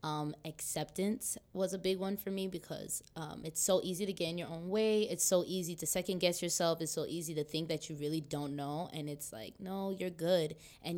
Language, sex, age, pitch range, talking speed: English, female, 20-39, 150-180 Hz, 235 wpm